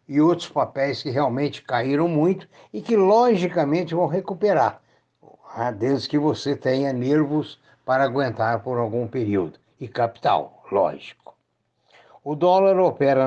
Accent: Brazilian